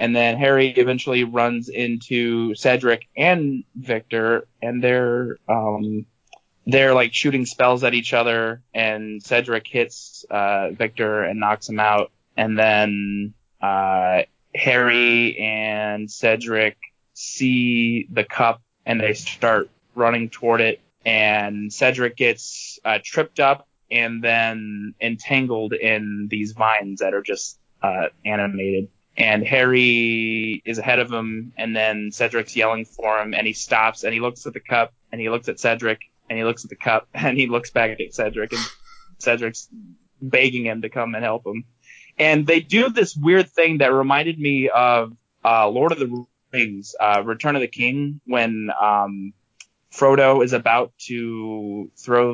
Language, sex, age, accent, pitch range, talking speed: English, male, 20-39, American, 110-125 Hz, 155 wpm